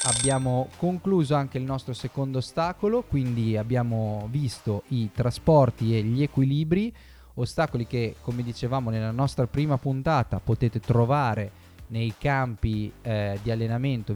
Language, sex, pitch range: Italian, male, 115-140 Hz